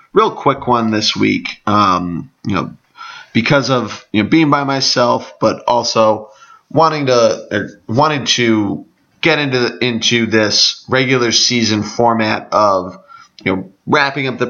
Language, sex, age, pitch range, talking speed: English, male, 30-49, 110-130 Hz, 145 wpm